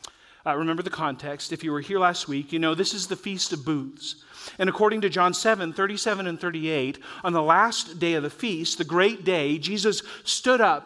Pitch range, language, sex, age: 160-205 Hz, English, male, 40-59